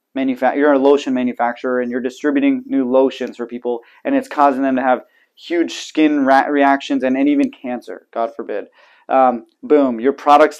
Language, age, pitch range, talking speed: English, 20-39, 130-155 Hz, 180 wpm